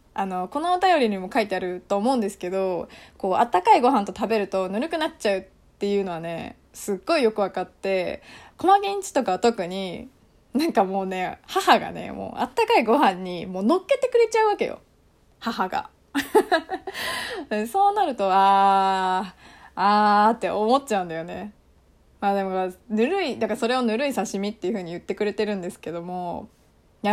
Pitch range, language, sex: 195-285 Hz, Japanese, female